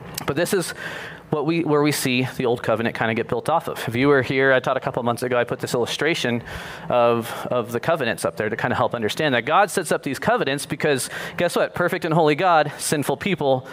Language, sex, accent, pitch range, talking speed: English, male, American, 130-165 Hz, 255 wpm